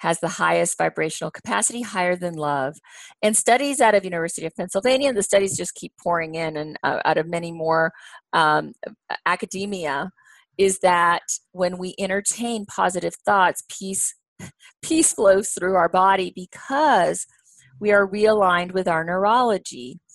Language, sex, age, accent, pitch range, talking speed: English, female, 40-59, American, 165-200 Hz, 145 wpm